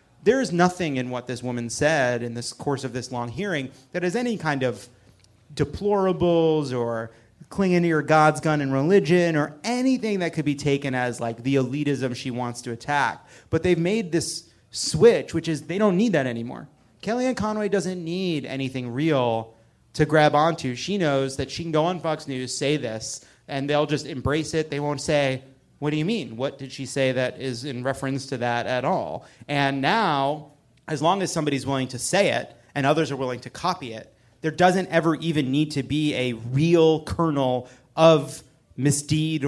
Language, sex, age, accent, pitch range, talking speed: English, male, 30-49, American, 130-165 Hz, 195 wpm